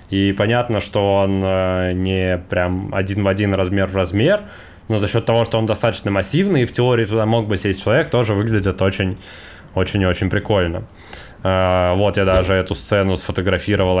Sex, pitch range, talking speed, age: male, 95-115 Hz, 170 wpm, 20-39